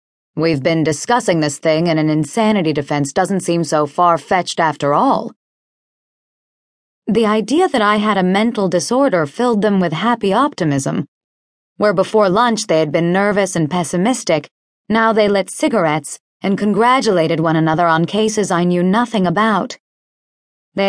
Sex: female